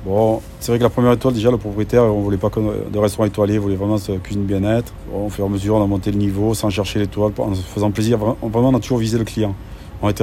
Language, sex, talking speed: French, male, 300 wpm